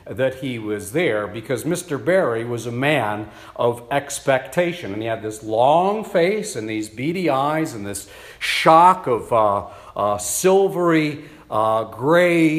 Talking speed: 150 wpm